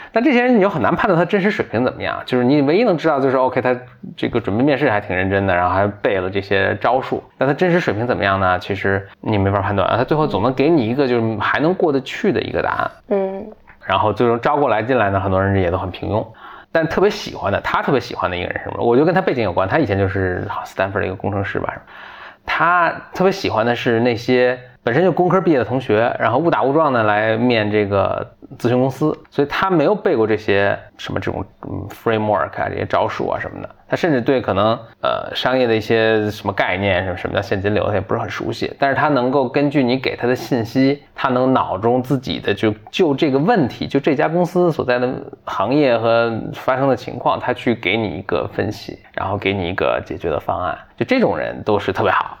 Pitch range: 100-145 Hz